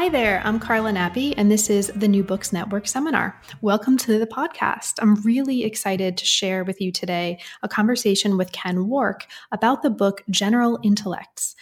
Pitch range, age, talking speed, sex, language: 185-220 Hz, 20-39, 180 wpm, female, English